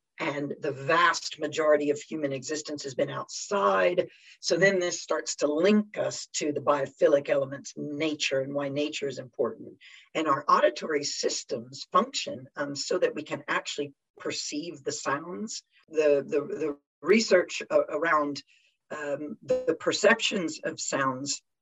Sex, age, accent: female, 50-69, American